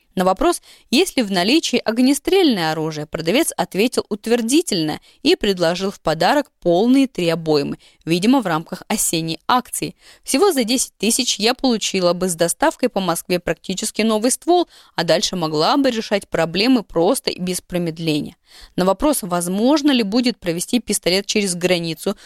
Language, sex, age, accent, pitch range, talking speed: Russian, female, 20-39, native, 175-260 Hz, 150 wpm